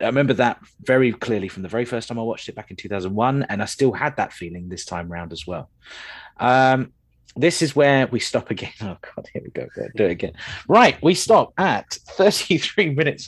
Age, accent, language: 30-49, British, English